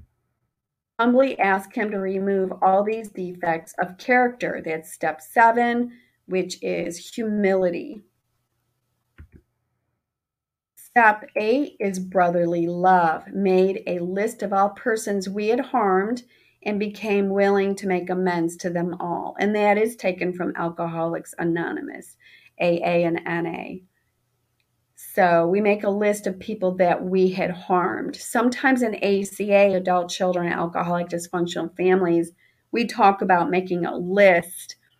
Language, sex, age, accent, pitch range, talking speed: English, female, 40-59, American, 170-200 Hz, 125 wpm